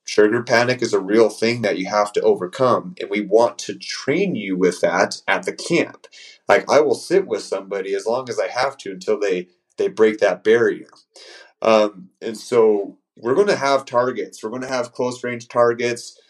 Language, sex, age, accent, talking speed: English, male, 30-49, American, 200 wpm